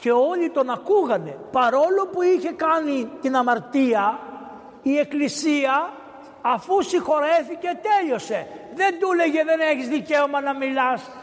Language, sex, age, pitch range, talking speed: Greek, male, 60-79, 210-295 Hz, 125 wpm